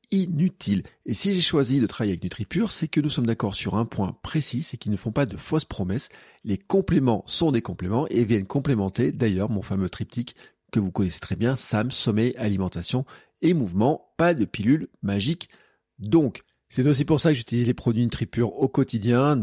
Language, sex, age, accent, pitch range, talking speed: French, male, 40-59, French, 100-140 Hz, 200 wpm